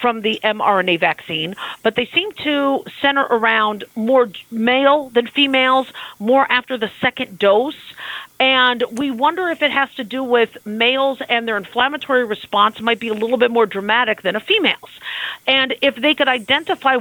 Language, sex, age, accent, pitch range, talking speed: English, female, 40-59, American, 210-270 Hz, 170 wpm